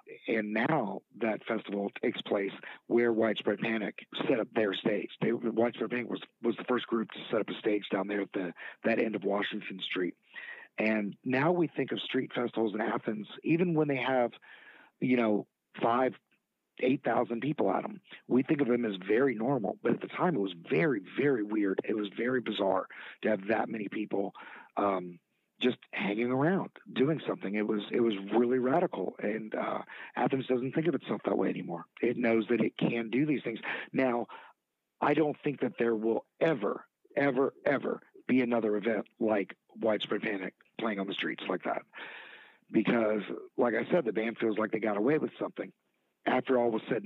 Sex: male